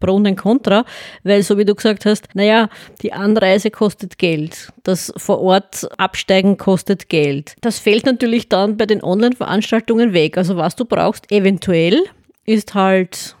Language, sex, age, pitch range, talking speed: German, female, 20-39, 185-220 Hz, 155 wpm